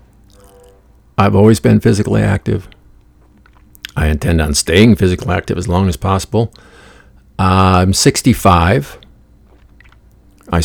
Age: 50-69